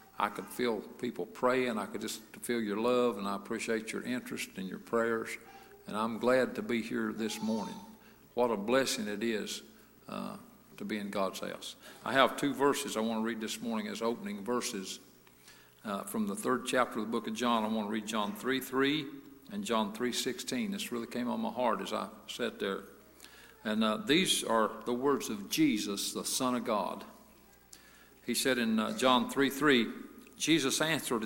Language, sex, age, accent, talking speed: English, male, 50-69, American, 200 wpm